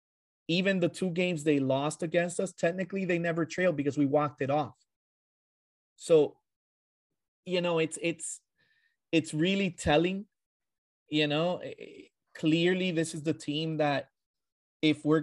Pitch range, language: 145-180 Hz, English